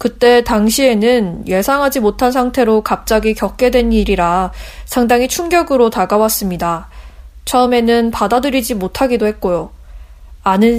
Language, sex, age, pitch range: Korean, female, 20-39, 195-255 Hz